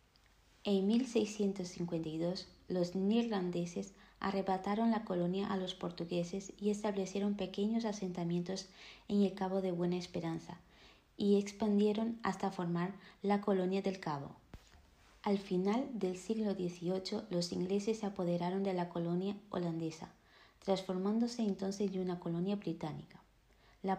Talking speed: 120 wpm